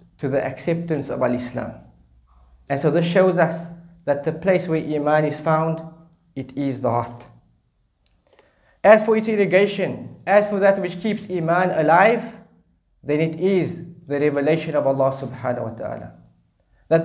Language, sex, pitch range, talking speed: English, male, 150-190 Hz, 150 wpm